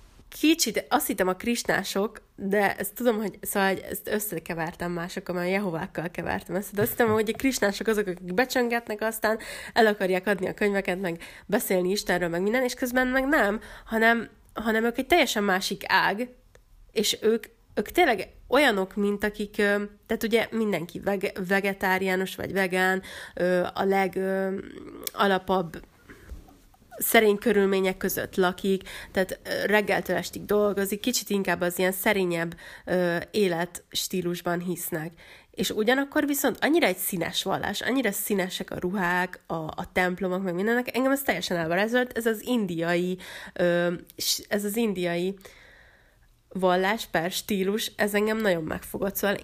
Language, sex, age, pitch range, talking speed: Hungarian, female, 20-39, 185-220 Hz, 140 wpm